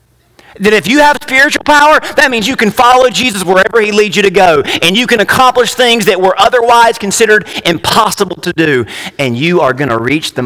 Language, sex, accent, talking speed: English, male, American, 205 wpm